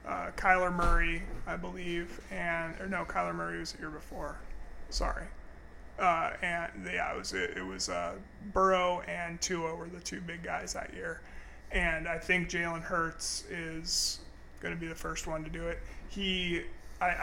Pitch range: 160-180 Hz